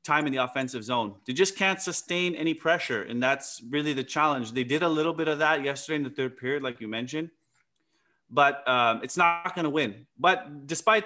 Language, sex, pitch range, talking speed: English, male, 130-160 Hz, 210 wpm